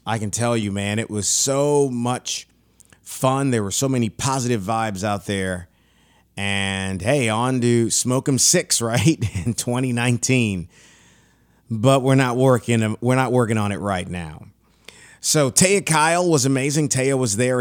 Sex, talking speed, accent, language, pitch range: male, 150 wpm, American, English, 105-135 Hz